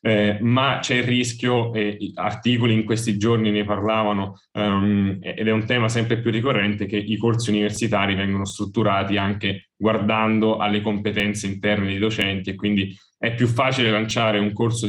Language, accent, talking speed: Italian, native, 165 wpm